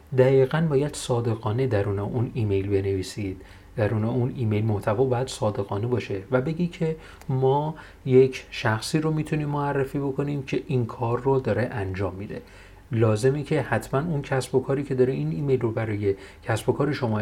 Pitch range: 105-135 Hz